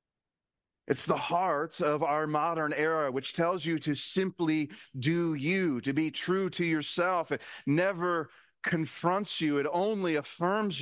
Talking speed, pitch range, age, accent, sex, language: 145 wpm, 130-160 Hz, 40-59, American, male, English